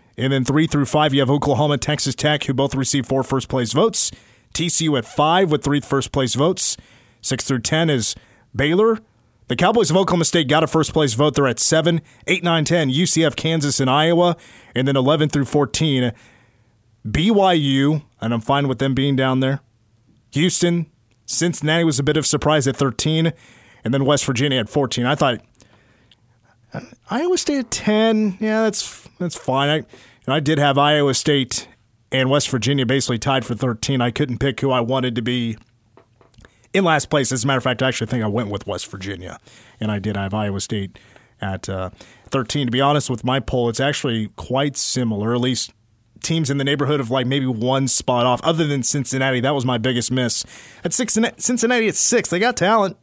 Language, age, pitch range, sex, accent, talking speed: English, 30-49, 120-155 Hz, male, American, 200 wpm